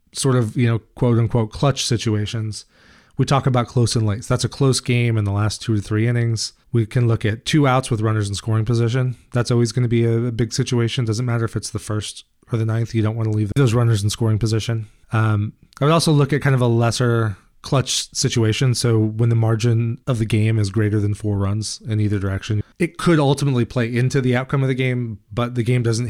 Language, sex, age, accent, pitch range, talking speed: English, male, 30-49, American, 105-125 Hz, 235 wpm